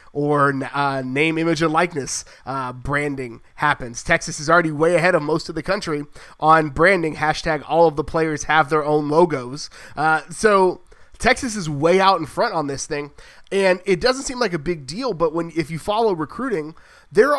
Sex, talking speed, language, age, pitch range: male, 195 wpm, English, 30-49, 145-180 Hz